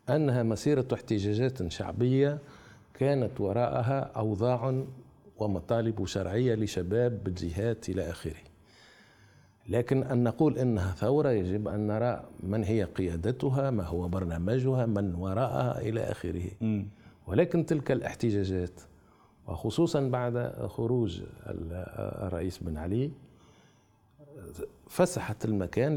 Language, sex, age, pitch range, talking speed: Arabic, male, 50-69, 100-130 Hz, 95 wpm